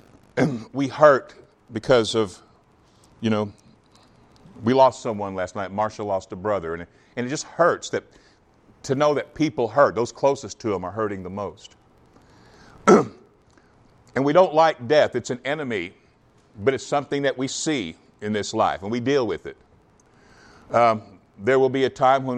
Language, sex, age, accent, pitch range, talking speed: English, male, 50-69, American, 105-140 Hz, 165 wpm